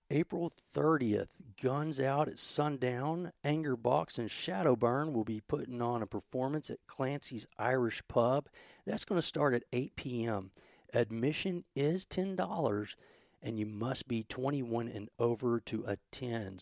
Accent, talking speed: American, 140 wpm